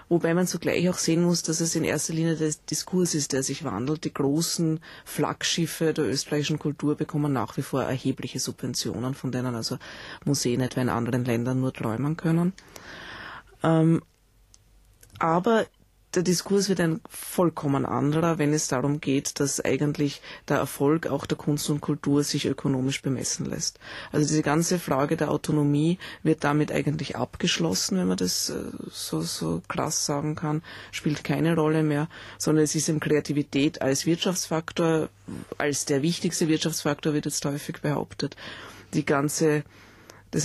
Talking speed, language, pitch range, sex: 155 wpm, German, 135-160 Hz, female